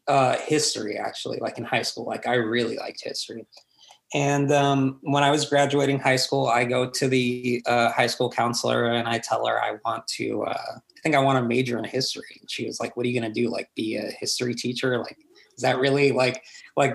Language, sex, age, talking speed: English, male, 20-39, 230 wpm